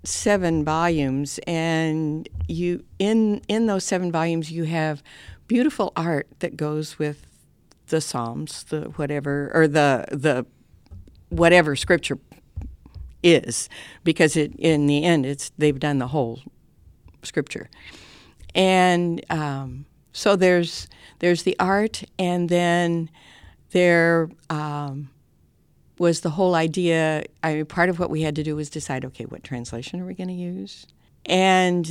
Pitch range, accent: 140-170 Hz, American